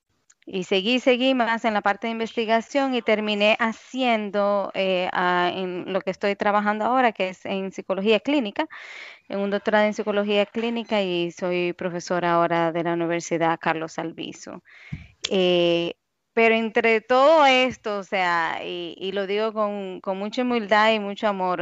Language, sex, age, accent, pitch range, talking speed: Spanish, female, 20-39, American, 180-210 Hz, 160 wpm